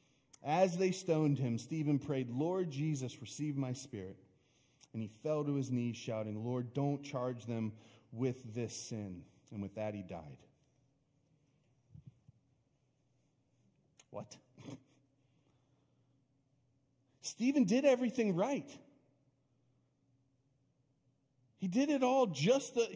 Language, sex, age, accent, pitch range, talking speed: English, male, 40-59, American, 130-195 Hz, 105 wpm